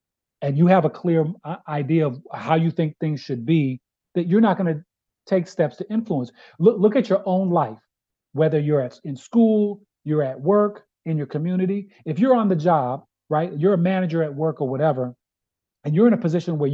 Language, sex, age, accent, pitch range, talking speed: English, male, 40-59, American, 135-180 Hz, 210 wpm